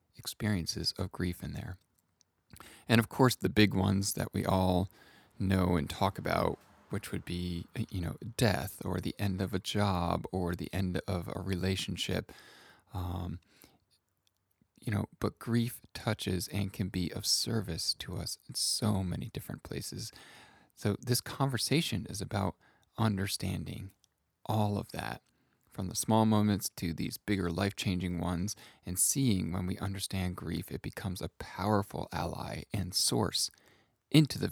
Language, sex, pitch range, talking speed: English, male, 90-105 Hz, 150 wpm